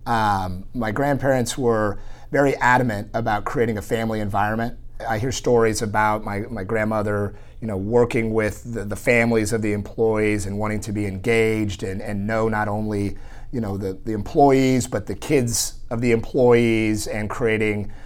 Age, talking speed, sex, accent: 30-49, 170 wpm, male, American